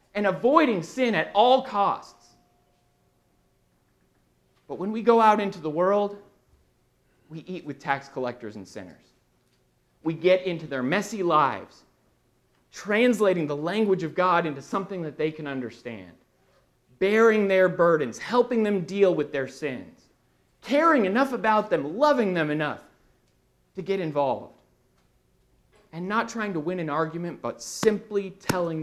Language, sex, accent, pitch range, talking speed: English, male, American, 135-180 Hz, 140 wpm